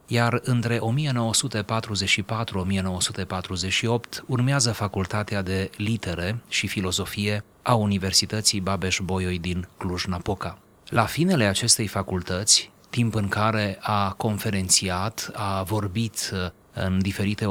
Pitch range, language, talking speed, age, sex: 95-110 Hz, Romanian, 95 wpm, 30-49, male